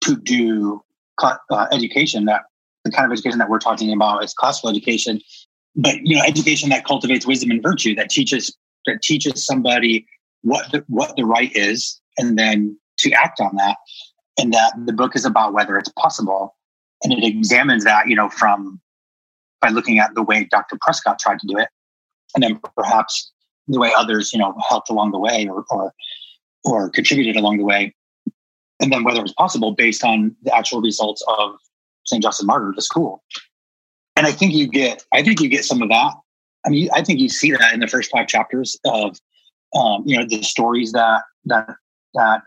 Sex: male